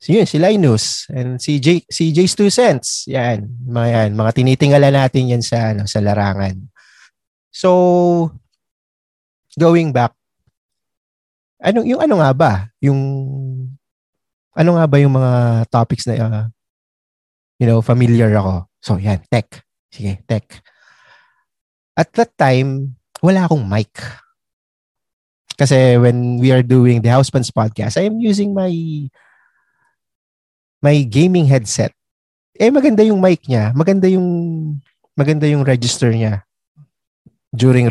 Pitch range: 110-145 Hz